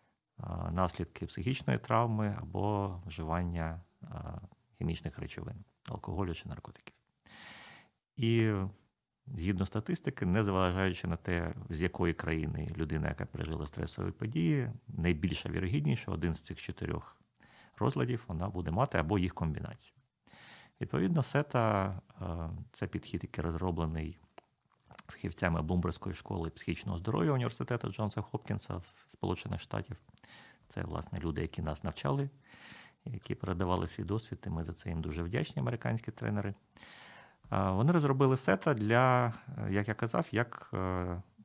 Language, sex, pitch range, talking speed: Ukrainian, male, 90-120 Hz, 115 wpm